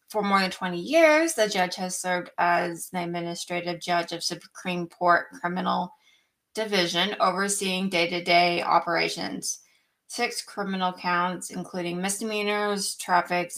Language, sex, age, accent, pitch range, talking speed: English, female, 20-39, American, 180-215 Hz, 120 wpm